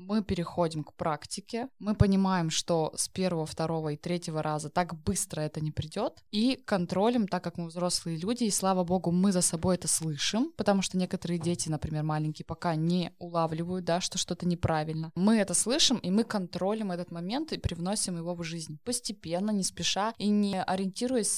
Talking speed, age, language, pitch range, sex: 180 wpm, 20-39, Russian, 170-205 Hz, female